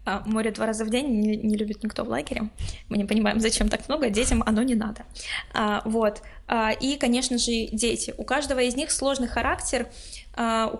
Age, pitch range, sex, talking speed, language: 20-39, 225-250 Hz, female, 180 wpm, Russian